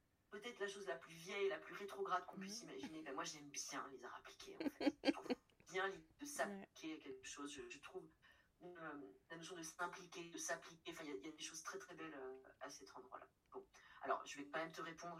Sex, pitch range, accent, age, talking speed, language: female, 145-195 Hz, French, 30-49, 240 wpm, French